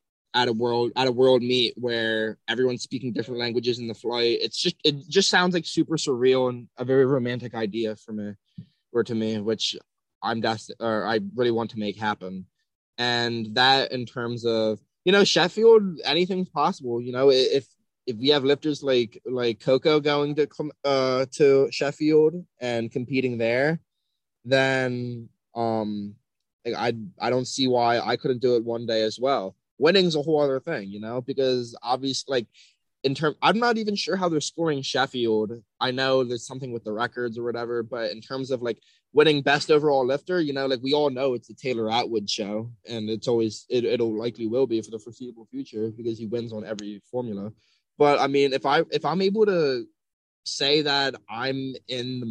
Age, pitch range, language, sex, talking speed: 20-39, 115-140 Hz, English, male, 190 wpm